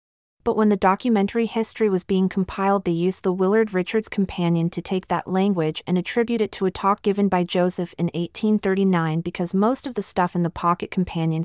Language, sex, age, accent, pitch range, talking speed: English, female, 30-49, American, 170-210 Hz, 200 wpm